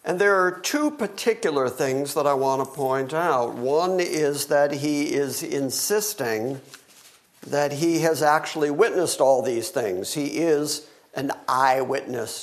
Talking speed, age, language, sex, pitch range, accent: 145 wpm, 60-79, English, male, 135-175 Hz, American